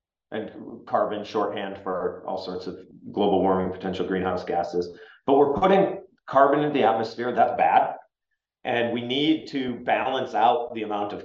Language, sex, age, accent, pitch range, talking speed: English, male, 30-49, American, 115-150 Hz, 160 wpm